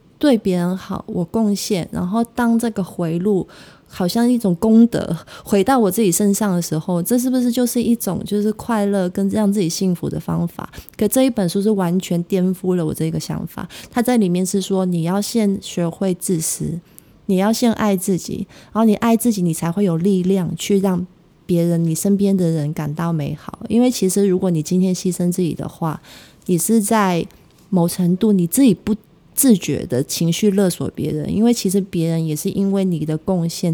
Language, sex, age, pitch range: Chinese, female, 20-39, 170-210 Hz